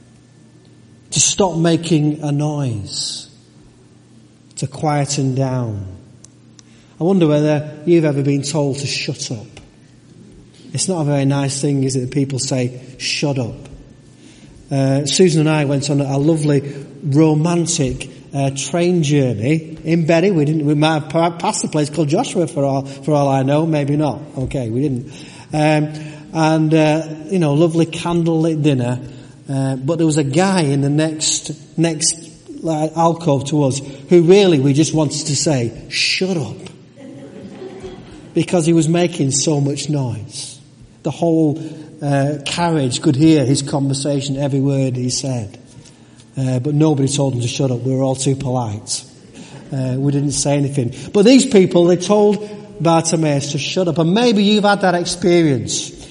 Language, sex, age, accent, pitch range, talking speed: English, male, 30-49, British, 135-165 Hz, 160 wpm